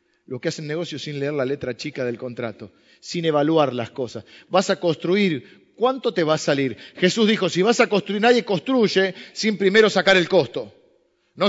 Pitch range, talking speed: 160-220 Hz, 195 wpm